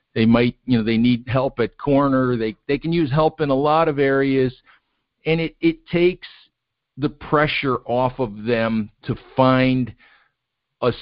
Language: English